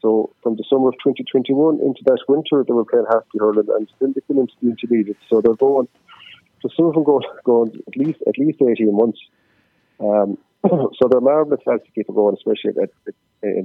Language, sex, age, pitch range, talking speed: English, male, 40-59, 105-135 Hz, 210 wpm